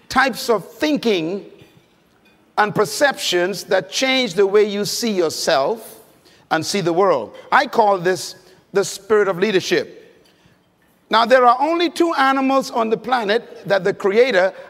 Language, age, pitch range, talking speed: English, 50-69, 190-260 Hz, 145 wpm